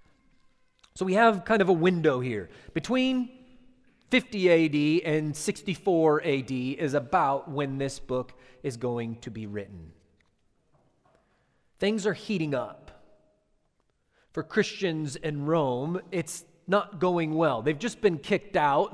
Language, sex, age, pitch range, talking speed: English, male, 30-49, 145-205 Hz, 130 wpm